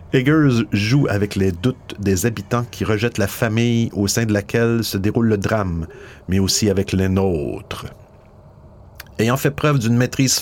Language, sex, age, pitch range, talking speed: French, male, 50-69, 95-120 Hz, 165 wpm